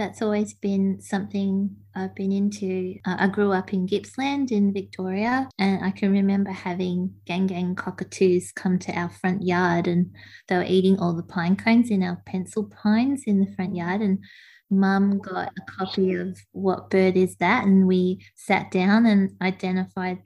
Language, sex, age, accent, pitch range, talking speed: English, female, 20-39, Australian, 175-195 Hz, 180 wpm